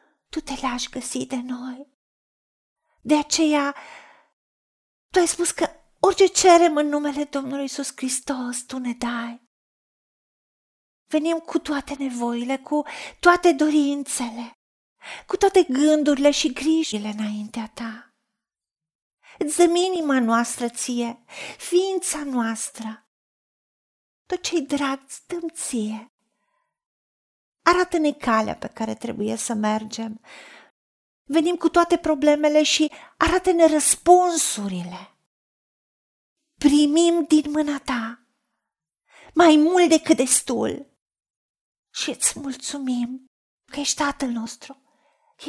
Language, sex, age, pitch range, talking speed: Romanian, female, 40-59, 240-320 Hz, 100 wpm